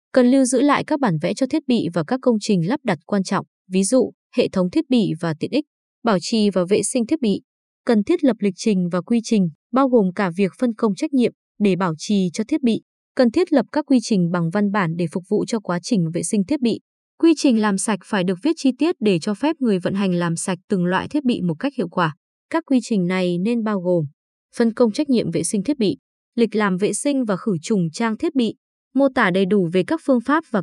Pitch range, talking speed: 185-255 Hz, 265 wpm